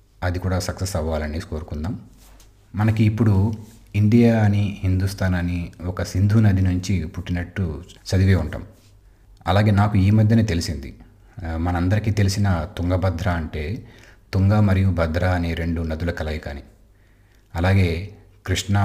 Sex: male